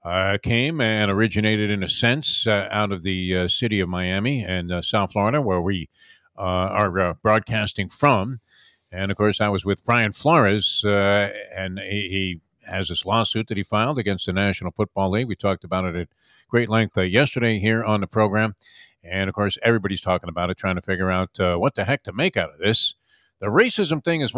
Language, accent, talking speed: English, American, 210 wpm